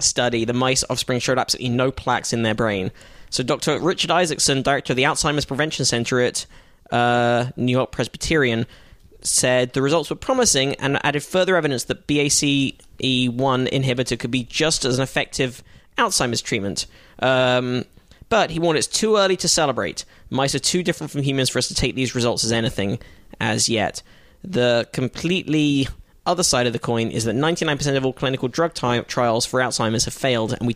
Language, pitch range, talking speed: English, 120-145 Hz, 180 wpm